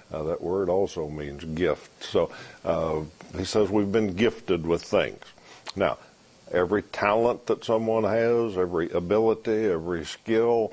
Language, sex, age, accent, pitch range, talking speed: English, male, 60-79, American, 80-105 Hz, 140 wpm